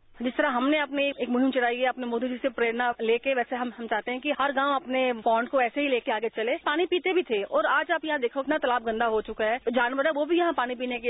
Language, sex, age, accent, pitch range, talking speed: English, female, 30-49, Indian, 225-280 Hz, 275 wpm